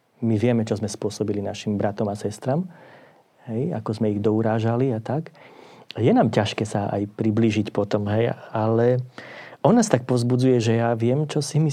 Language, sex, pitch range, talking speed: Slovak, male, 110-130 Hz, 180 wpm